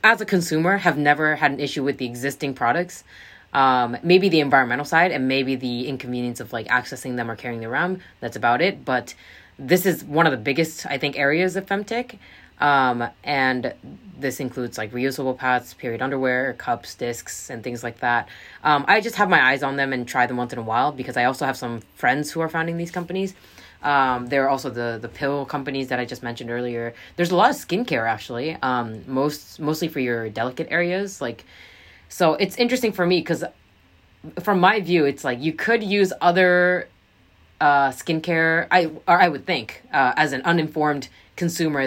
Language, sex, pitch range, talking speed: English, female, 125-165 Hz, 200 wpm